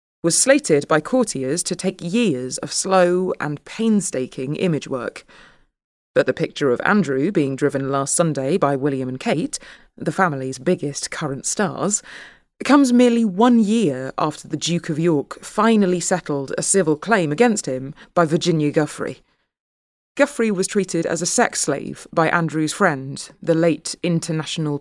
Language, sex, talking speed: English, female, 150 wpm